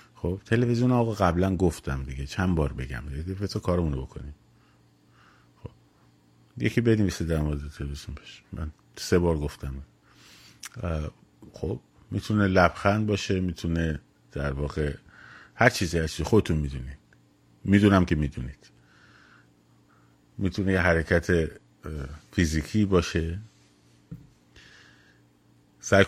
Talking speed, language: 105 wpm, Persian